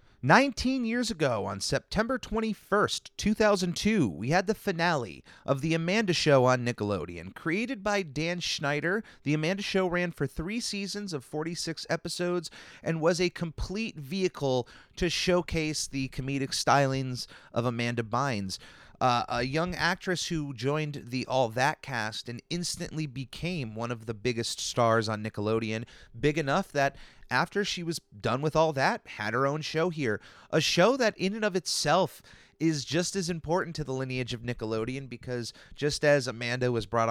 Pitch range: 120-180 Hz